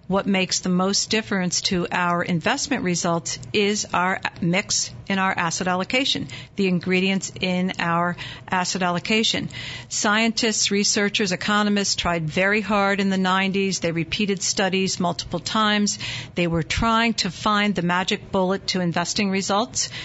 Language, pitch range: English, 170-205 Hz